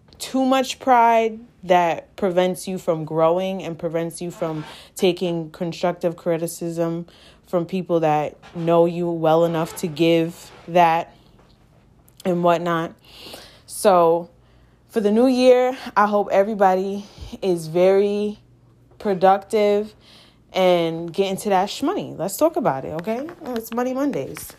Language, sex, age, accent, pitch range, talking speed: English, female, 20-39, American, 155-200 Hz, 125 wpm